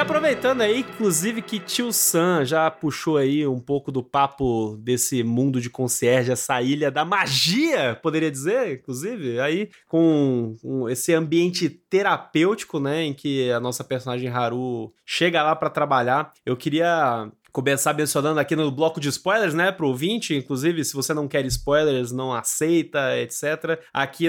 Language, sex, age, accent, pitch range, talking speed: Portuguese, male, 20-39, Brazilian, 140-180 Hz, 160 wpm